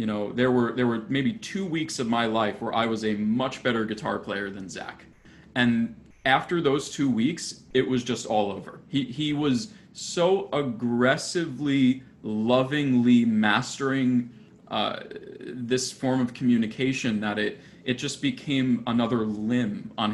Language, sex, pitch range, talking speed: English, male, 110-140 Hz, 155 wpm